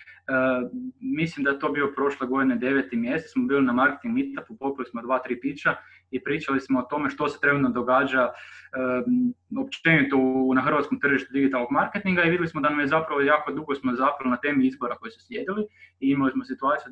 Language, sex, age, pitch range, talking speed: Croatian, male, 20-39, 130-155 Hz, 210 wpm